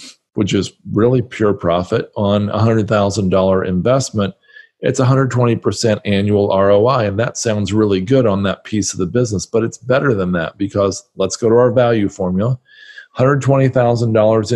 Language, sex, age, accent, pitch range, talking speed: English, male, 40-59, American, 100-125 Hz, 150 wpm